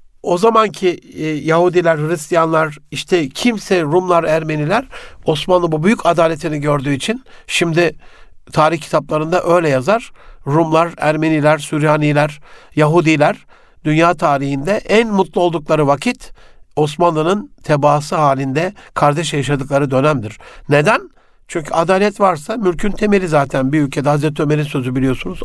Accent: native